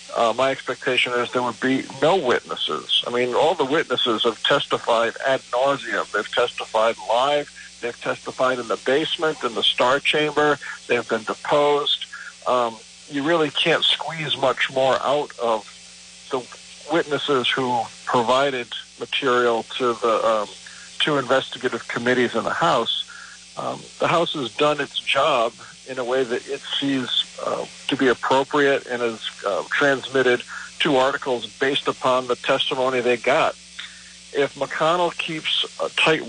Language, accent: English, American